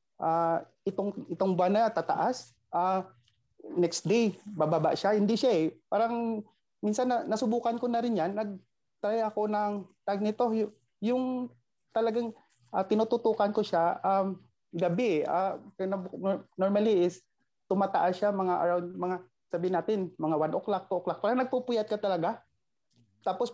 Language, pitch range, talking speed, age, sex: Filipino, 180-220 Hz, 145 wpm, 30-49, male